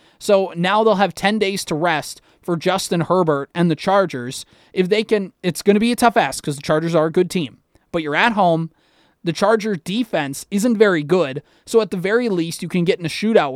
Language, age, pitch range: English, 20-39, 160-210 Hz